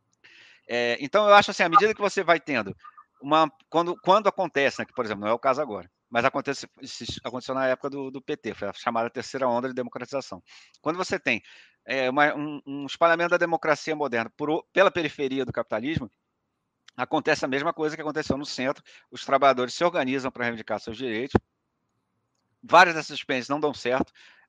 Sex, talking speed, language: male, 190 wpm, Portuguese